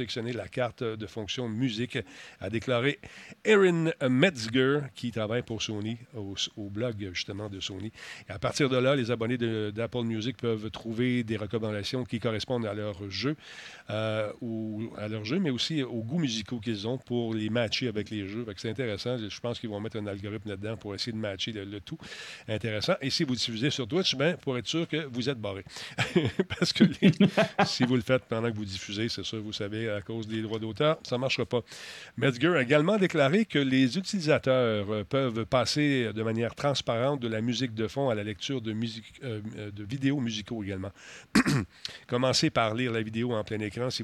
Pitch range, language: 110-130 Hz, French